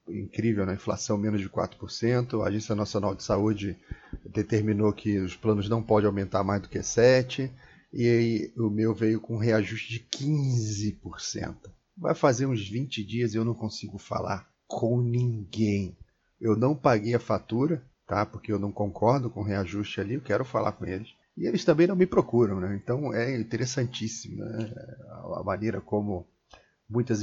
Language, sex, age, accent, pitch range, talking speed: Portuguese, male, 30-49, Brazilian, 105-140 Hz, 175 wpm